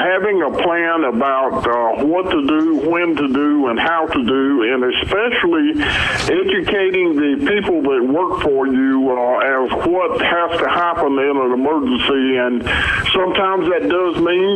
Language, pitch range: English, 135-190 Hz